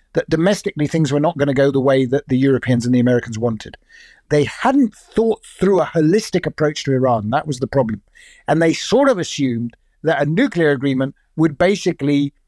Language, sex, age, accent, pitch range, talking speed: English, male, 50-69, British, 145-195 Hz, 195 wpm